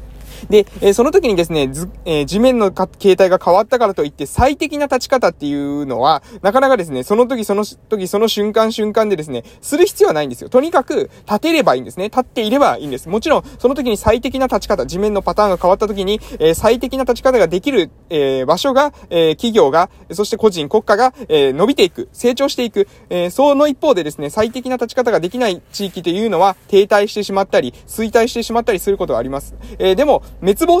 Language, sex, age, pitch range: Japanese, male, 20-39, 175-260 Hz